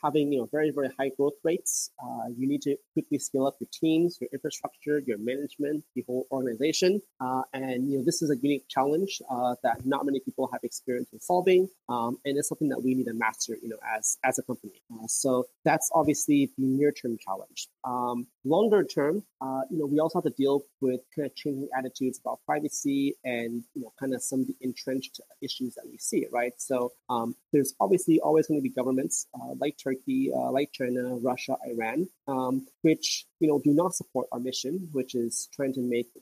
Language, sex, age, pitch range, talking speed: English, male, 30-49, 125-150 Hz, 215 wpm